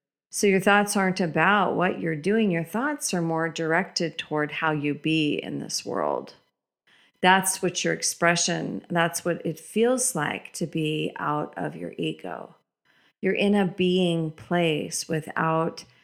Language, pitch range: English, 155-210 Hz